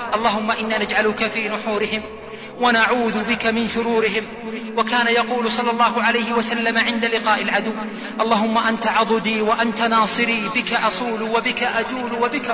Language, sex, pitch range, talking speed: Arabic, male, 210-230 Hz, 135 wpm